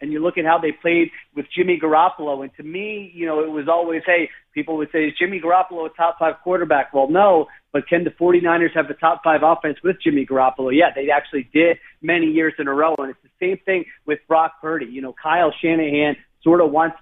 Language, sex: English, male